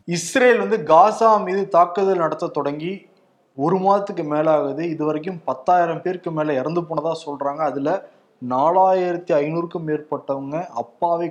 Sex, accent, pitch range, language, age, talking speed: male, native, 145-175 Hz, Tamil, 20-39, 115 wpm